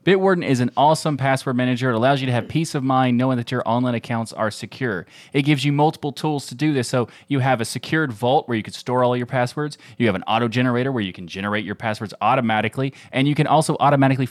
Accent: American